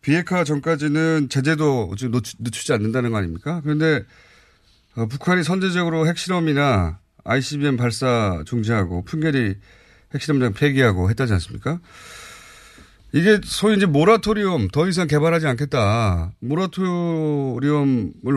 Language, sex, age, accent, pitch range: Korean, male, 30-49, native, 110-165 Hz